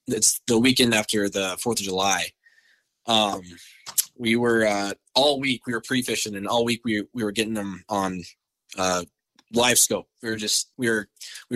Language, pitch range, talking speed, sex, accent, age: English, 100-130 Hz, 180 wpm, male, American, 20-39